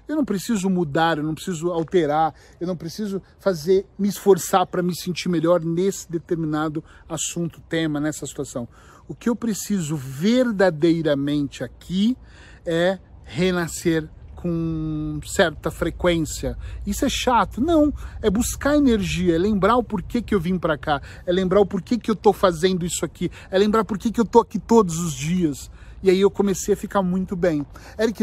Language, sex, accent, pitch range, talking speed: Portuguese, male, Brazilian, 160-205 Hz, 170 wpm